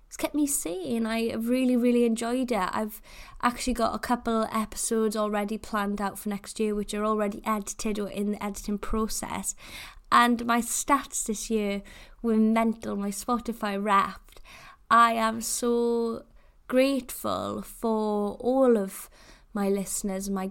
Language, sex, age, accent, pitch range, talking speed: English, female, 10-29, British, 210-235 Hz, 145 wpm